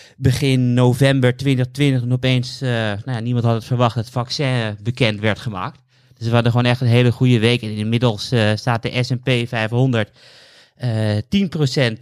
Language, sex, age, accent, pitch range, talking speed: Dutch, male, 30-49, Dutch, 115-135 Hz, 165 wpm